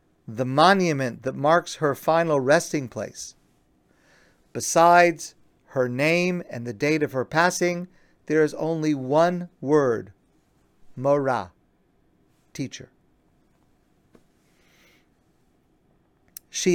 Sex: male